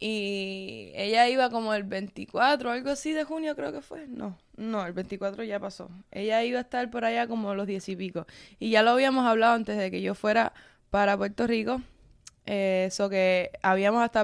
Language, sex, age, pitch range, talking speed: Spanish, female, 20-39, 200-235 Hz, 200 wpm